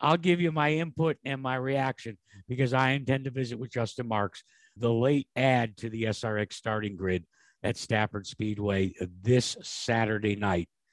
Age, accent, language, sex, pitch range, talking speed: 60-79, American, English, male, 110-150 Hz, 165 wpm